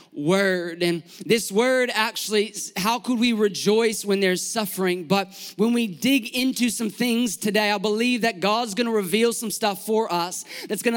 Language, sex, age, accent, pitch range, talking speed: English, male, 20-39, American, 195-235 Hz, 180 wpm